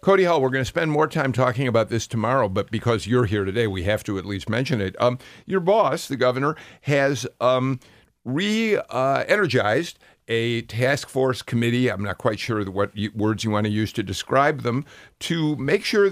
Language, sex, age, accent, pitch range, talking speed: English, male, 50-69, American, 110-135 Hz, 195 wpm